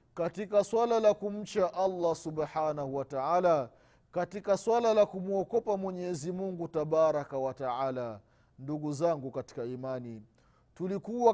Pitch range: 150-215 Hz